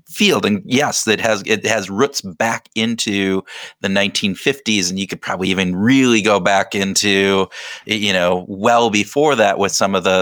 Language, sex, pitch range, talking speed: English, male, 95-110 Hz, 175 wpm